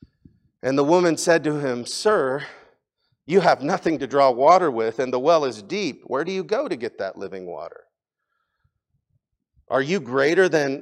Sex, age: male, 40-59